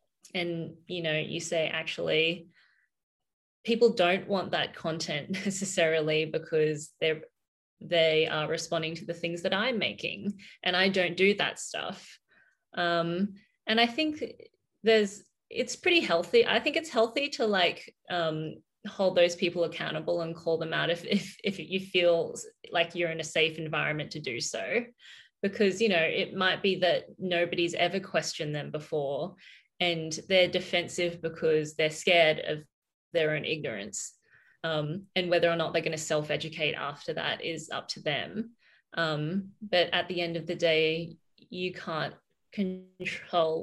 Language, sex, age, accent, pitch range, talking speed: English, female, 20-39, Australian, 160-200 Hz, 155 wpm